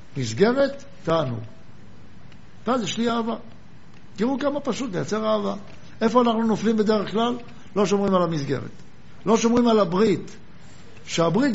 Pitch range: 155-215 Hz